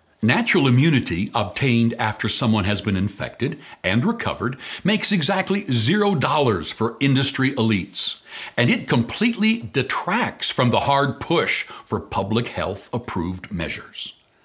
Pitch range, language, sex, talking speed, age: 115-180 Hz, English, male, 125 wpm, 60-79